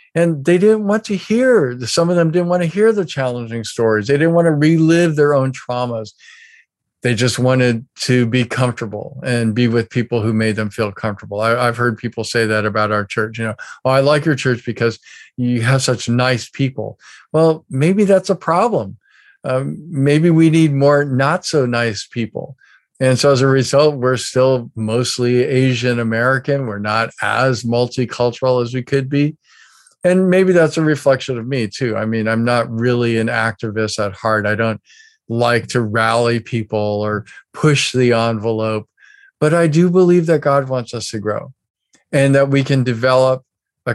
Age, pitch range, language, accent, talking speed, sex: 50-69, 110-140 Hz, English, American, 185 wpm, male